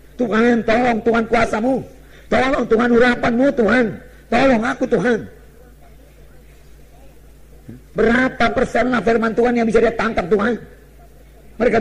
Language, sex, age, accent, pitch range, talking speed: English, male, 50-69, Indonesian, 190-235 Hz, 105 wpm